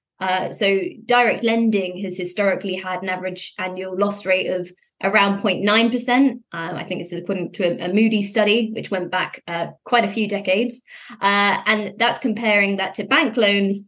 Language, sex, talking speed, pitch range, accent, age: English, female, 175 wpm, 185-220 Hz, British, 20-39